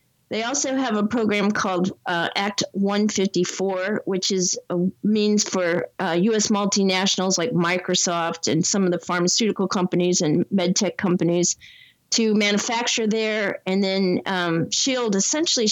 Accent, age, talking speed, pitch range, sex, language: American, 40-59, 135 wpm, 180-215 Hz, female, English